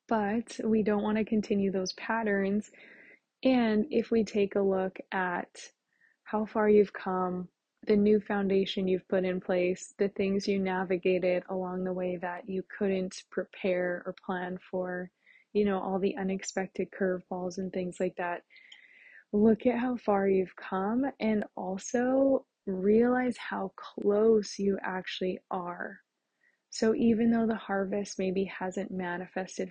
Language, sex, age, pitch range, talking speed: English, female, 20-39, 185-215 Hz, 145 wpm